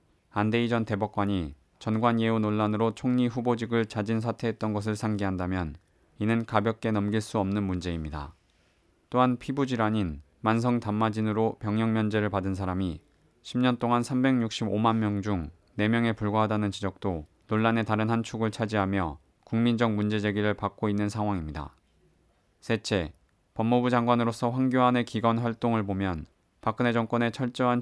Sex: male